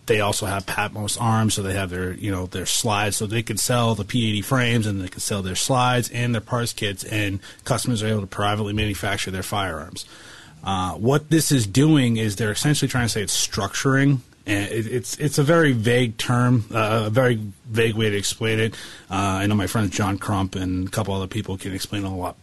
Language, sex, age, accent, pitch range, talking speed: English, male, 30-49, American, 95-120 Hz, 225 wpm